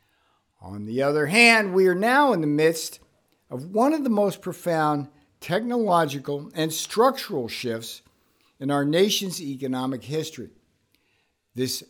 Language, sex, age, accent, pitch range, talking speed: English, male, 60-79, American, 130-185 Hz, 130 wpm